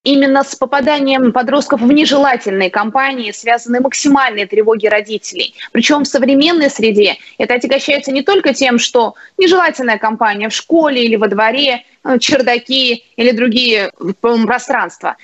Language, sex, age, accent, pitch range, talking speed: Russian, female, 20-39, native, 225-275 Hz, 125 wpm